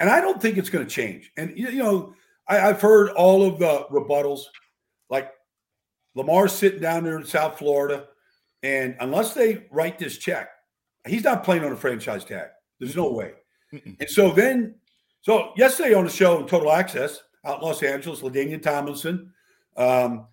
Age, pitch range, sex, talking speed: 50-69, 145-205 Hz, male, 175 wpm